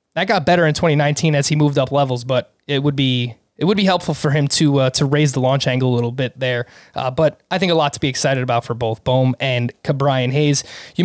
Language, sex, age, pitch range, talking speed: English, male, 20-39, 140-180 Hz, 260 wpm